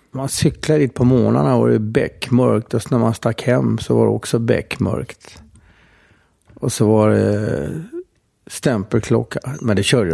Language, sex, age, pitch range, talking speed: English, male, 50-69, 105-125 Hz, 150 wpm